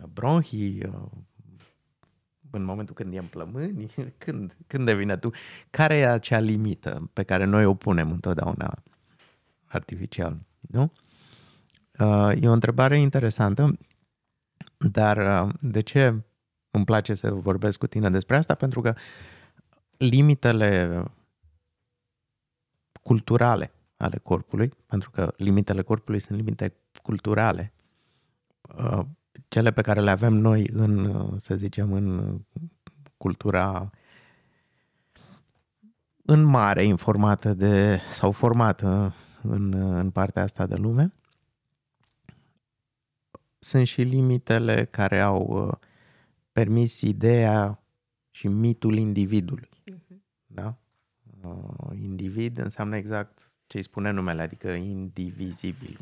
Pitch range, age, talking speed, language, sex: 100-125 Hz, 30-49, 100 wpm, Romanian, male